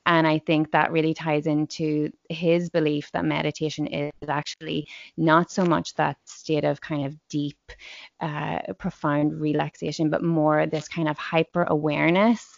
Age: 20-39